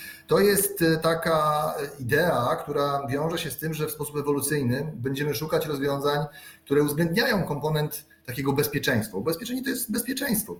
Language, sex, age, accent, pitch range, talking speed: Polish, male, 30-49, native, 130-165 Hz, 140 wpm